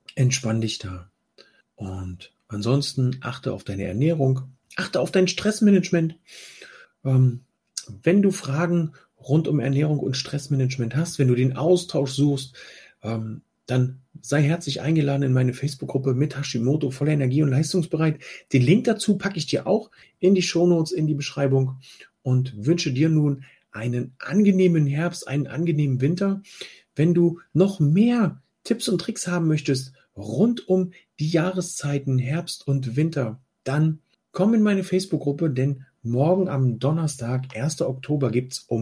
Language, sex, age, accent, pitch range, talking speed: German, male, 40-59, German, 130-165 Hz, 145 wpm